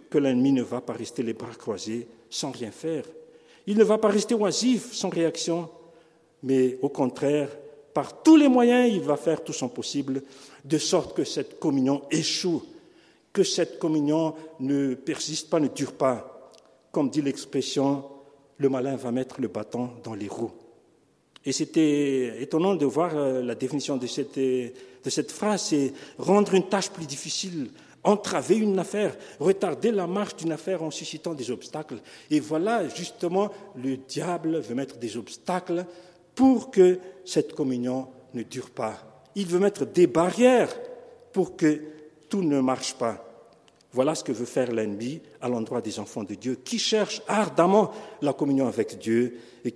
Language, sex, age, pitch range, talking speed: French, male, 50-69, 130-190 Hz, 165 wpm